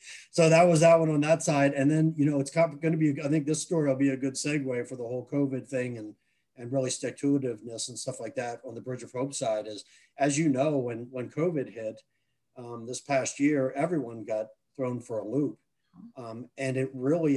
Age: 40-59